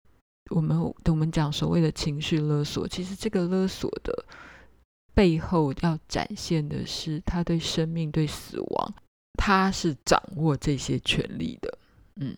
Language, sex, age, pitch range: Chinese, female, 20-39, 145-175 Hz